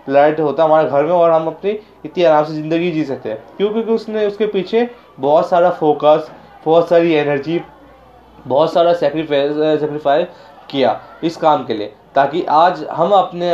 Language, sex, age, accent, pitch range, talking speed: Hindi, male, 20-39, native, 150-190 Hz, 175 wpm